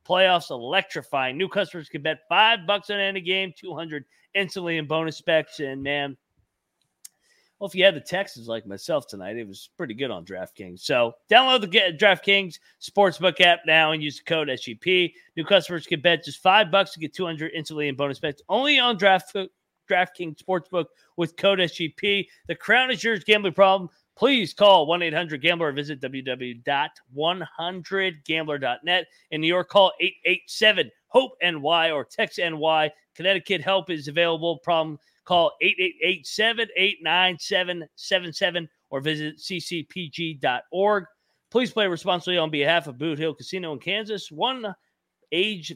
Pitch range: 155-195 Hz